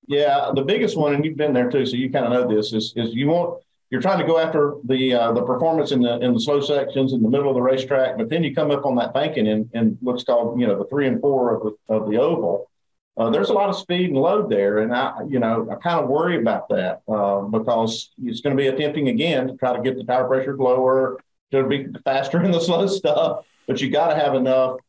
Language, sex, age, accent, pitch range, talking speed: English, male, 50-69, American, 120-155 Hz, 265 wpm